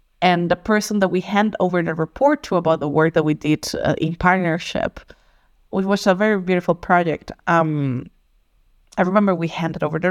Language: English